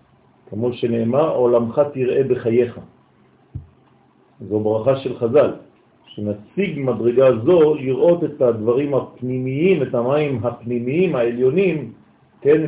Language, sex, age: French, male, 50-69